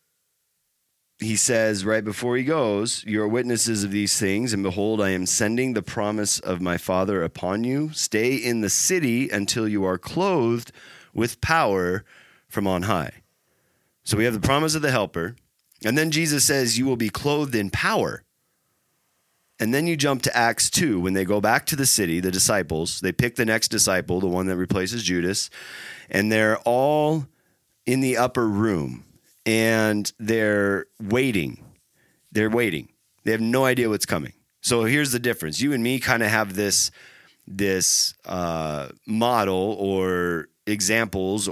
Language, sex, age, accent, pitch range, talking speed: English, male, 30-49, American, 95-120 Hz, 165 wpm